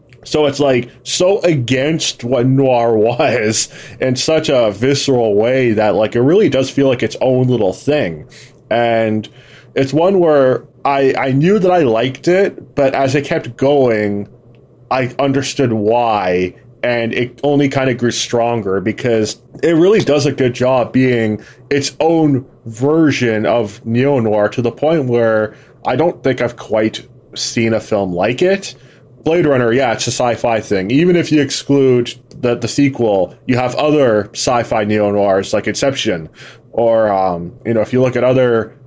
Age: 20-39